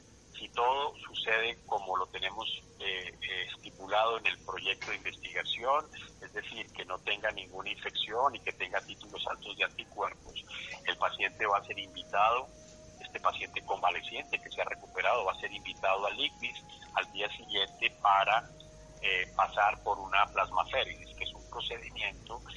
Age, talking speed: 40-59, 160 wpm